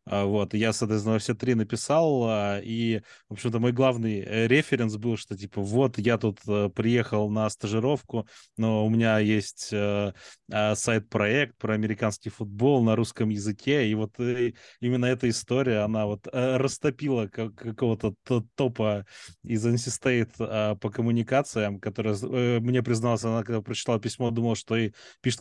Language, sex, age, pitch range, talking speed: Russian, male, 20-39, 105-120 Hz, 130 wpm